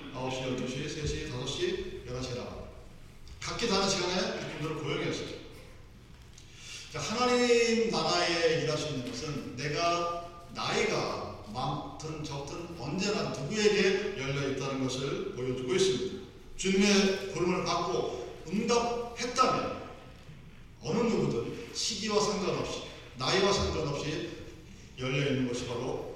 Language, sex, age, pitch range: Korean, male, 40-59, 130-185 Hz